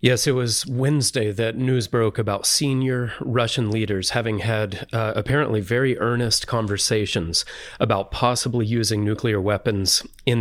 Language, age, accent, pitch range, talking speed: English, 30-49, American, 100-120 Hz, 140 wpm